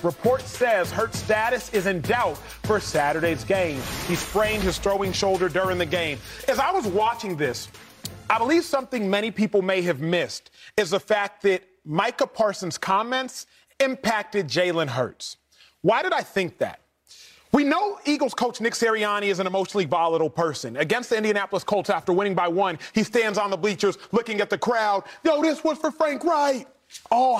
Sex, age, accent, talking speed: male, 30-49, American, 175 wpm